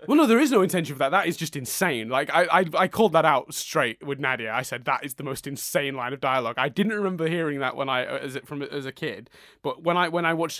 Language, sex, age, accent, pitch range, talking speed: English, male, 20-39, British, 140-200 Hz, 290 wpm